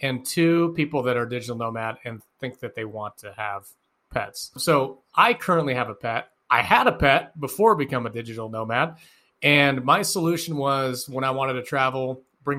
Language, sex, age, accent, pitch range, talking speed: English, male, 30-49, American, 120-145 Hz, 195 wpm